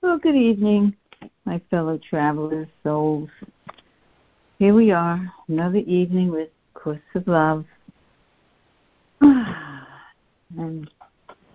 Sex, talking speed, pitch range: female, 90 wpm, 145-180 Hz